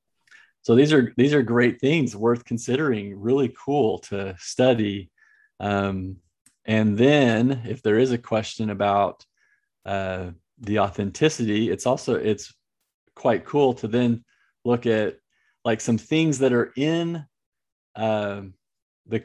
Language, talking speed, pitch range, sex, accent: English, 130 wpm, 105-125 Hz, male, American